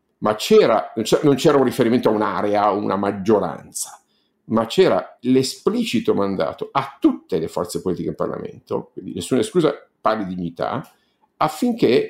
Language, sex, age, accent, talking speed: Italian, male, 50-69, native, 155 wpm